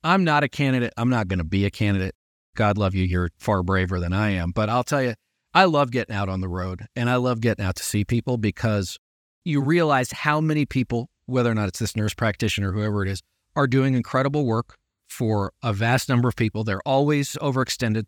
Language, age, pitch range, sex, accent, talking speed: English, 40-59, 110-170 Hz, male, American, 230 wpm